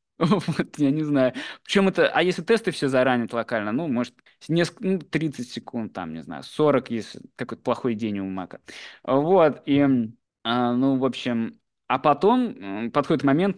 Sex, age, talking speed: male, 20-39, 165 wpm